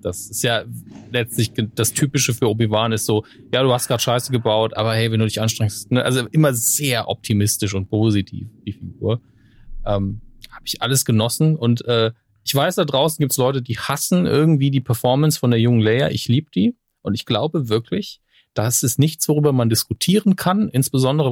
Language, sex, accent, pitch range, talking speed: German, male, German, 115-145 Hz, 195 wpm